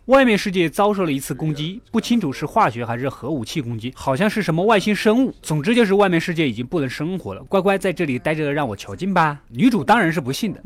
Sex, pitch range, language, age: male, 150-225 Hz, Chinese, 20-39